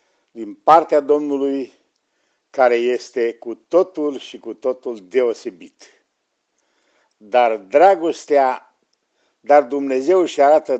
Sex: male